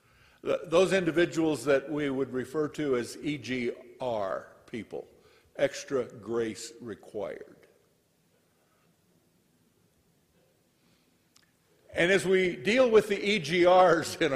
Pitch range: 105-135 Hz